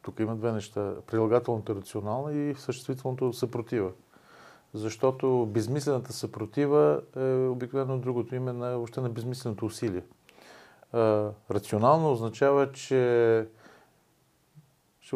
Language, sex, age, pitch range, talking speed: Bulgarian, male, 40-59, 105-130 Hz, 105 wpm